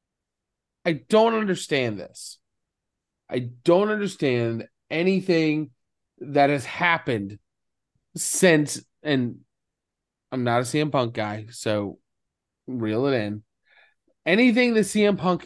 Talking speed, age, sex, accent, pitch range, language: 105 wpm, 30-49, male, American, 125-170 Hz, English